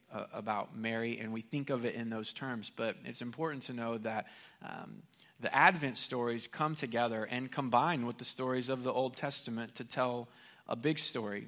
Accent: American